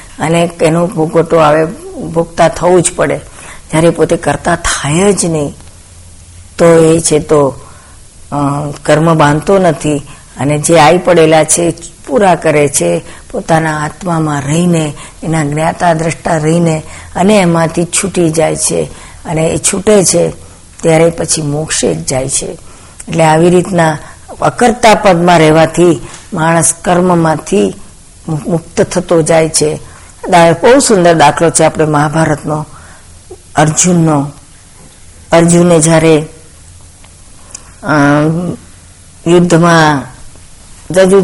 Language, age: Gujarati, 50-69